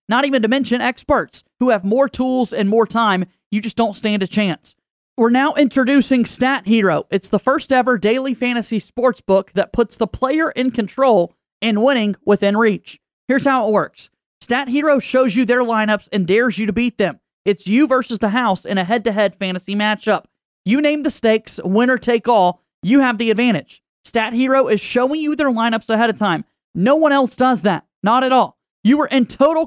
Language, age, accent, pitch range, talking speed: English, 30-49, American, 210-260 Hz, 200 wpm